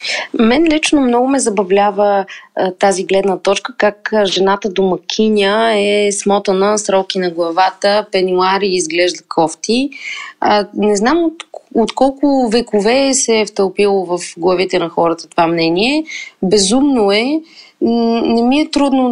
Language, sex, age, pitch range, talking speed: Bulgarian, female, 20-39, 195-270 Hz, 140 wpm